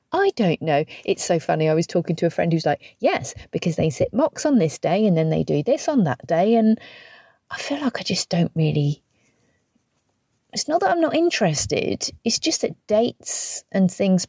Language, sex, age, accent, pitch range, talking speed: English, female, 30-49, British, 160-230 Hz, 210 wpm